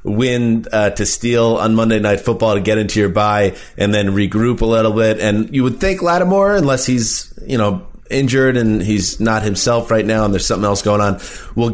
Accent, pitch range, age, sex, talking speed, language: American, 110-135 Hz, 30-49, male, 215 wpm, English